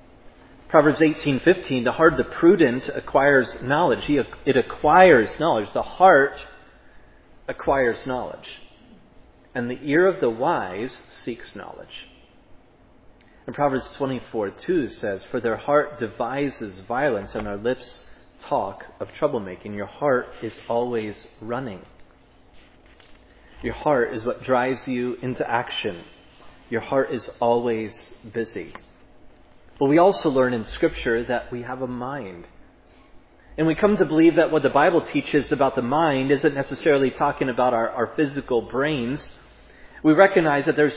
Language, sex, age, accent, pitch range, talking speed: English, male, 30-49, American, 120-150 Hz, 135 wpm